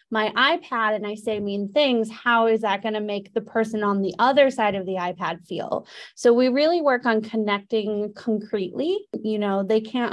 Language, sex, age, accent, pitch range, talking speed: English, female, 20-39, American, 210-245 Hz, 200 wpm